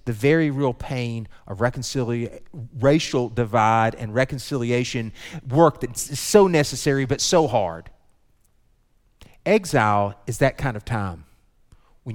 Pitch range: 105-140 Hz